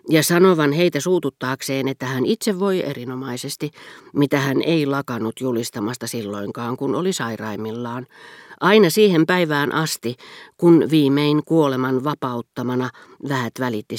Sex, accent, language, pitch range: female, native, Finnish, 125-155 Hz